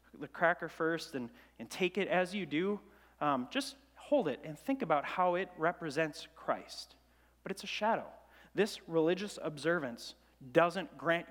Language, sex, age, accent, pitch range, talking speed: English, male, 30-49, American, 125-165 Hz, 160 wpm